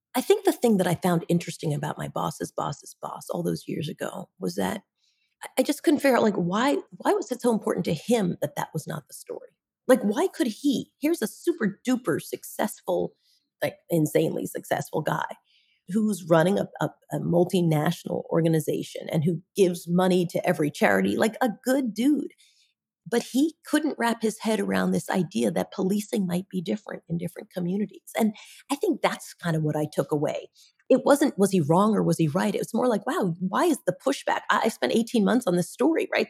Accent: American